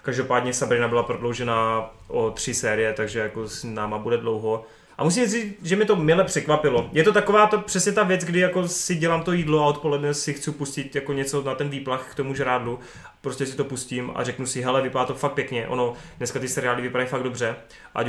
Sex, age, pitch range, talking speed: male, 20-39, 130-145 Hz, 220 wpm